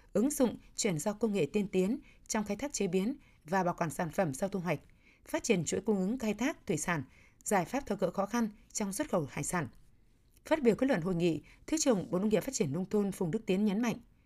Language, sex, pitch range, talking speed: Vietnamese, female, 175-225 Hz, 255 wpm